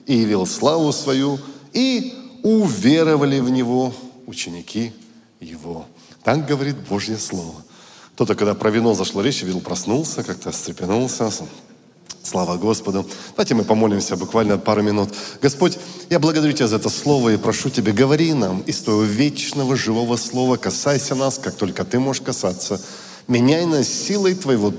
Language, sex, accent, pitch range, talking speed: Russian, male, native, 110-165 Hz, 145 wpm